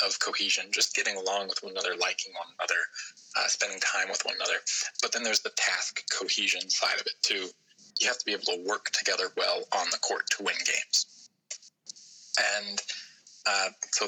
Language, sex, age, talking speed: English, male, 20-39, 190 wpm